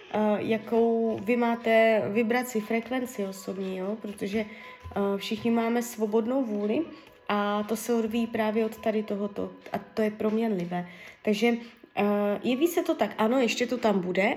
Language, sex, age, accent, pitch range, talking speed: Czech, female, 20-39, native, 210-255 Hz, 155 wpm